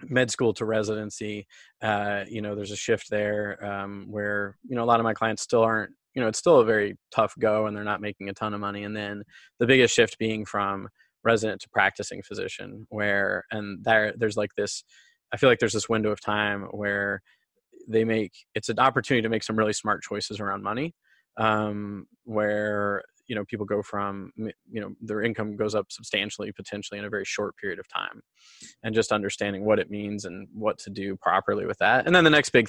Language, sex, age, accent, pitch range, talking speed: English, male, 20-39, American, 105-115 Hz, 215 wpm